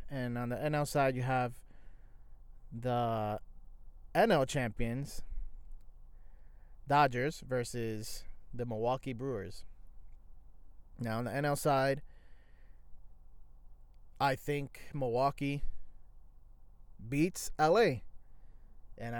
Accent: American